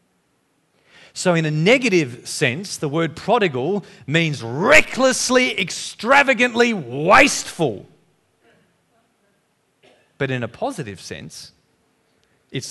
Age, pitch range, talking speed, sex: 40-59, 115-180 Hz, 85 wpm, male